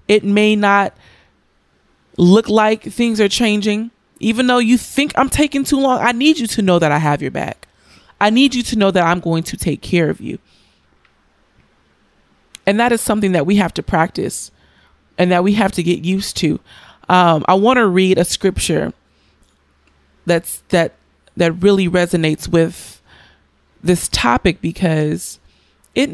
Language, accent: English, American